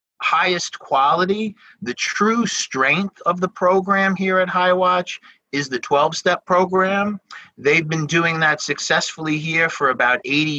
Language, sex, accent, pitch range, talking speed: English, male, American, 135-180 Hz, 140 wpm